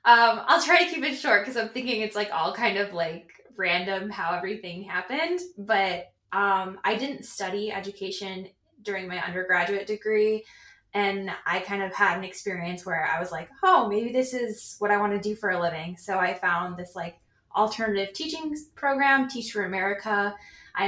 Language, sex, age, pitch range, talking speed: English, female, 10-29, 195-225 Hz, 185 wpm